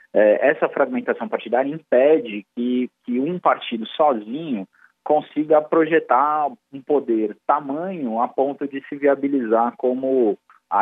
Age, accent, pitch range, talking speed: 20-39, Brazilian, 120-160 Hz, 115 wpm